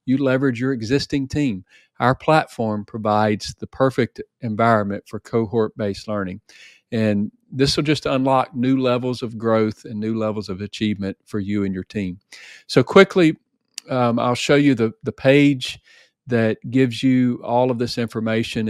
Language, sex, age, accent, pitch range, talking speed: English, male, 40-59, American, 100-120 Hz, 155 wpm